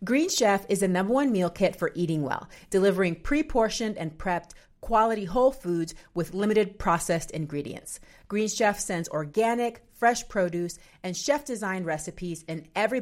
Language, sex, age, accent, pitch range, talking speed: English, female, 30-49, American, 170-225 Hz, 150 wpm